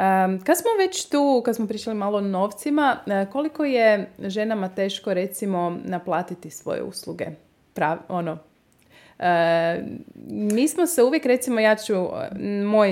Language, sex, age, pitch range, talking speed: Croatian, female, 20-39, 185-265 Hz, 115 wpm